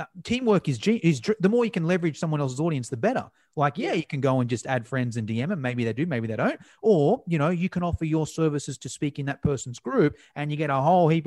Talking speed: 280 wpm